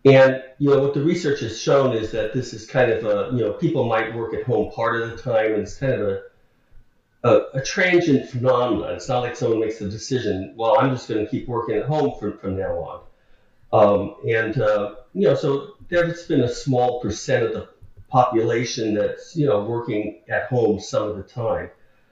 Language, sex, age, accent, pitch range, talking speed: English, male, 50-69, American, 110-140 Hz, 215 wpm